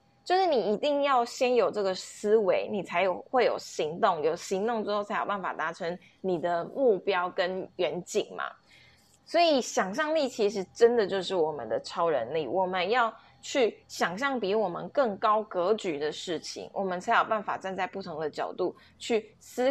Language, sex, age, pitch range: Chinese, female, 20-39, 185-250 Hz